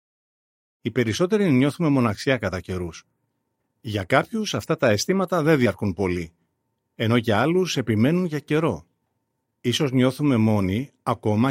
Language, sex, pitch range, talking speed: Greek, male, 105-135 Hz, 125 wpm